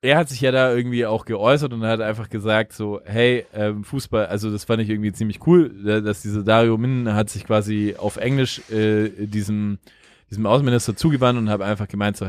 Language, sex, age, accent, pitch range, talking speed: German, male, 20-39, German, 100-115 Hz, 205 wpm